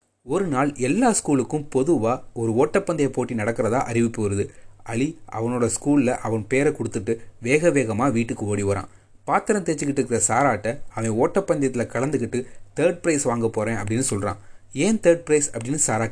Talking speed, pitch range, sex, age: 145 wpm, 110-140 Hz, male, 30-49